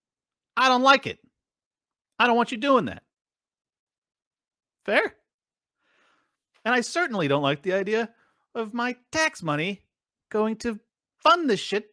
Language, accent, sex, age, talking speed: English, American, male, 40-59, 135 wpm